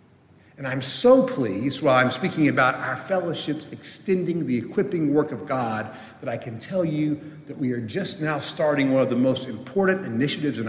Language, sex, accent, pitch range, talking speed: English, male, American, 130-185 Hz, 190 wpm